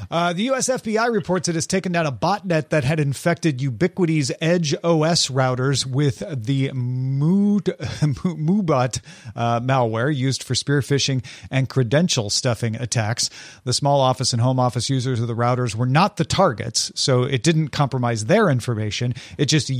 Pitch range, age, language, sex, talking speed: 125-165 Hz, 40-59, English, male, 165 wpm